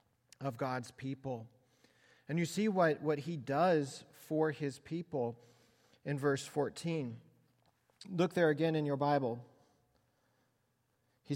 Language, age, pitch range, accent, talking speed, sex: English, 40-59, 130-150 Hz, American, 120 wpm, male